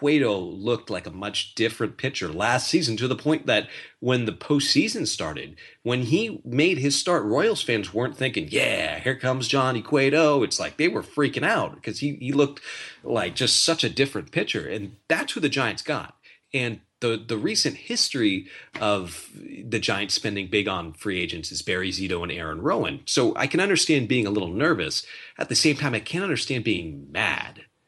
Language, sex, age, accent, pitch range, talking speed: English, male, 30-49, American, 105-140 Hz, 190 wpm